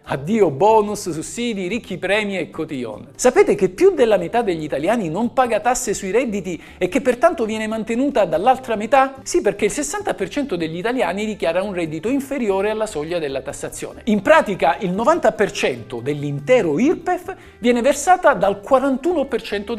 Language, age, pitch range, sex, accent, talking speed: Italian, 50-69, 165-275 Hz, male, native, 150 wpm